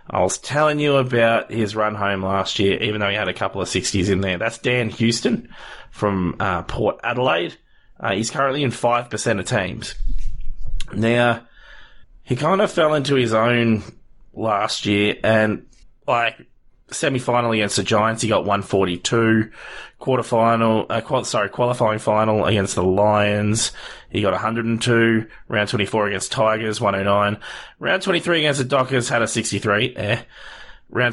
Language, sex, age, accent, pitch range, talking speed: English, male, 20-39, Australian, 105-125 Hz, 150 wpm